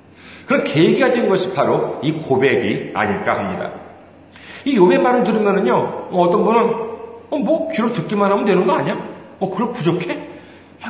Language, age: Korean, 40-59